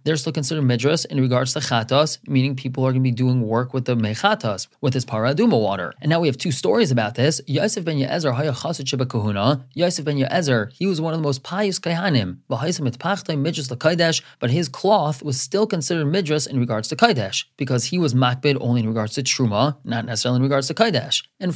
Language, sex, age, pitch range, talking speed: English, male, 30-49, 125-165 Hz, 190 wpm